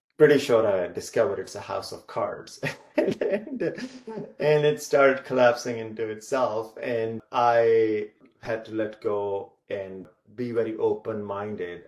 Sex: male